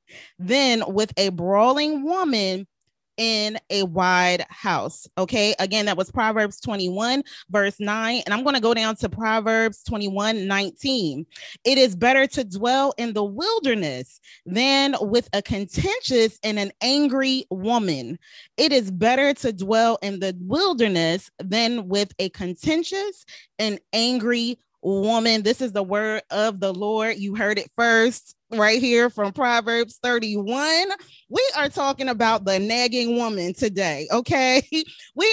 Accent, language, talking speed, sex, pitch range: American, English, 140 wpm, female, 200-255 Hz